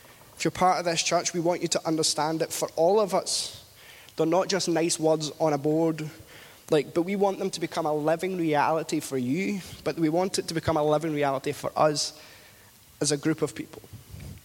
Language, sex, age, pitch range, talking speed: English, male, 20-39, 145-180 Hz, 215 wpm